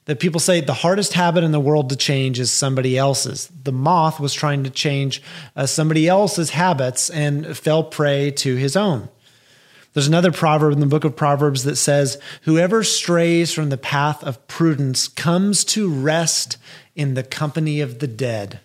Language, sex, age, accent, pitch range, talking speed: English, male, 30-49, American, 140-175 Hz, 180 wpm